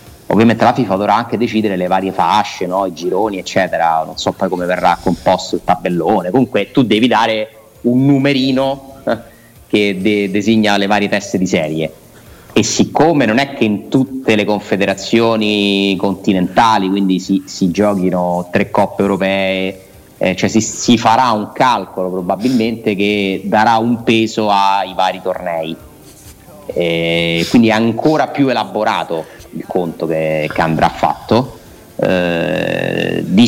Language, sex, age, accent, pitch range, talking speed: Italian, male, 30-49, native, 90-110 Hz, 140 wpm